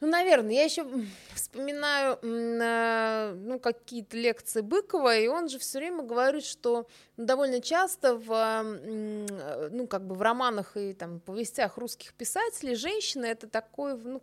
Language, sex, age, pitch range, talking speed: Russian, female, 20-39, 230-285 Hz, 140 wpm